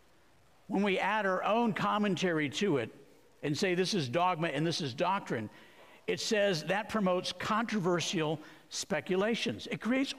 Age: 60-79